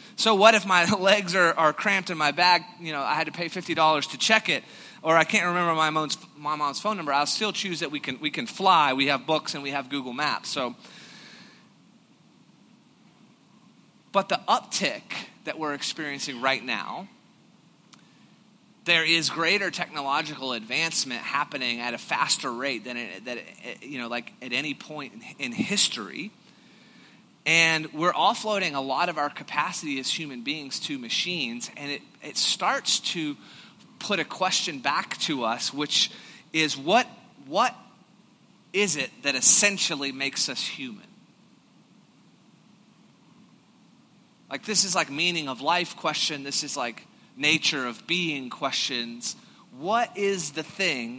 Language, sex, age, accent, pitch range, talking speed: English, male, 30-49, American, 150-210 Hz, 155 wpm